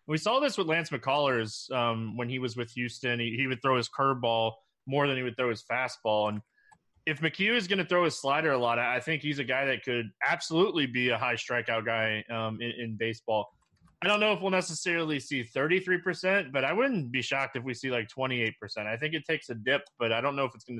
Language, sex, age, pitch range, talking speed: English, male, 20-39, 120-145 Hz, 240 wpm